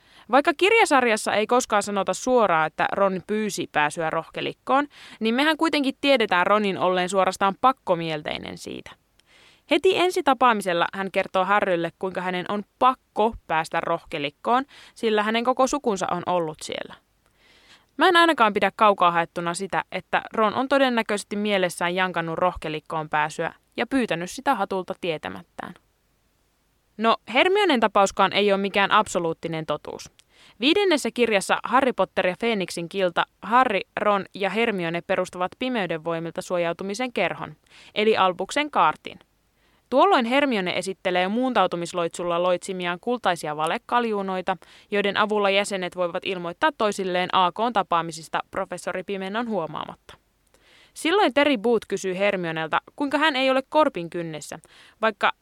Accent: native